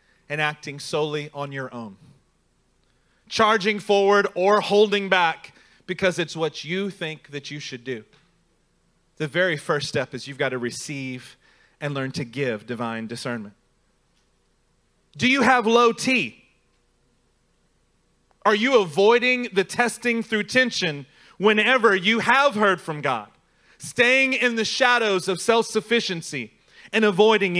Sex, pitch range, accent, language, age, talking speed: male, 150-210 Hz, American, English, 30-49, 135 wpm